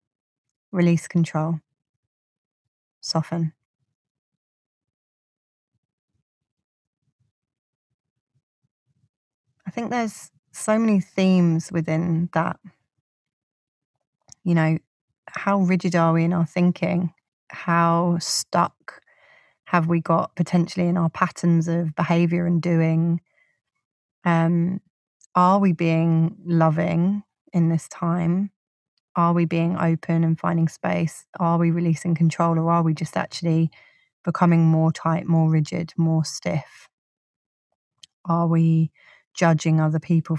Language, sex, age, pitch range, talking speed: English, female, 30-49, 160-175 Hz, 105 wpm